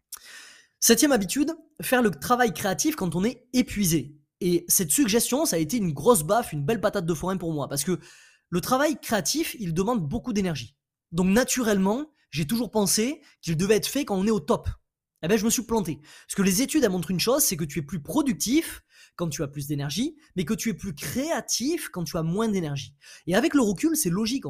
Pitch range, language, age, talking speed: 175-250 Hz, French, 20-39, 225 wpm